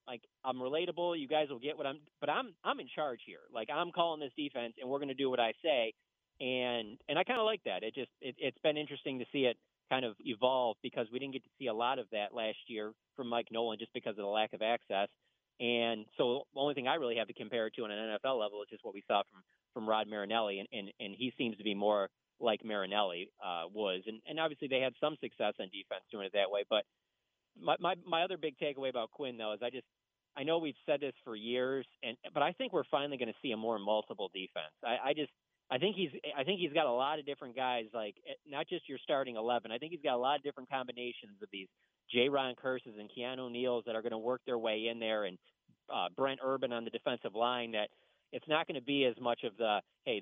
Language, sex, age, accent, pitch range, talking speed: English, male, 30-49, American, 115-145 Hz, 260 wpm